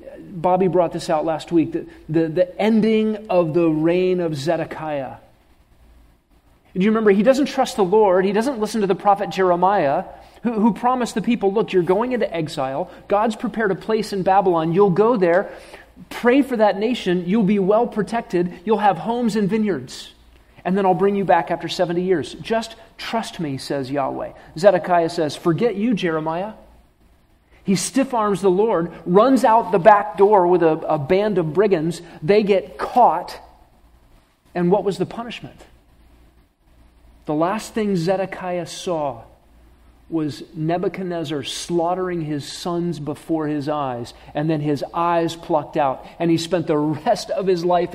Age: 40-59